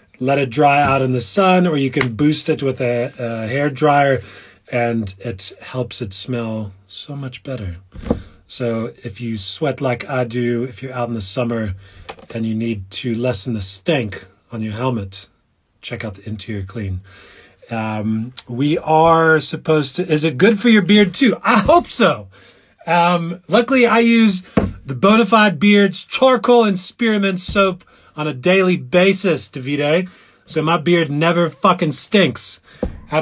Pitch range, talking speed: 110-185 Hz, 165 wpm